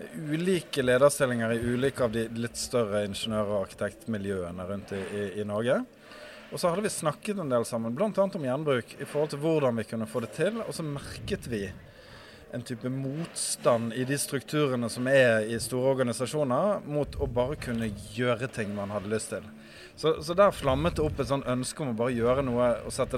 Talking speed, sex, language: 195 wpm, male, English